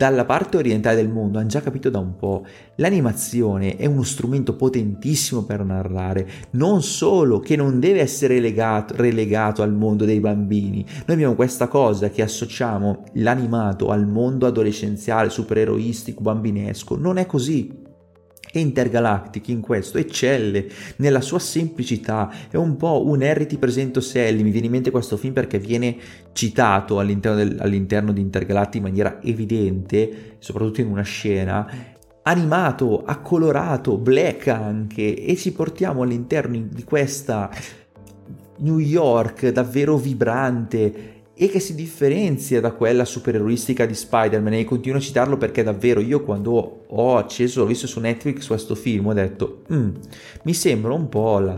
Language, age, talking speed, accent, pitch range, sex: Italian, 30-49, 145 wpm, native, 105-135 Hz, male